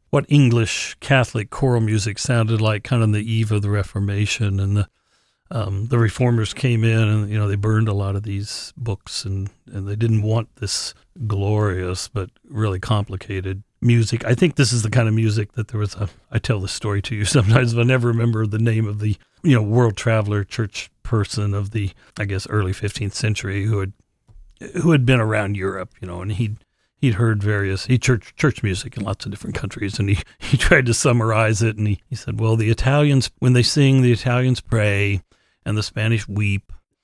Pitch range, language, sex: 100-115 Hz, English, male